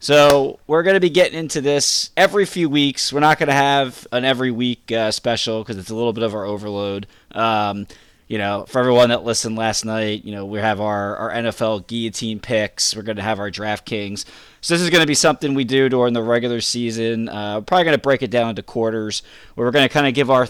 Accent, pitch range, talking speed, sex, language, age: American, 110-135 Hz, 250 wpm, male, English, 20-39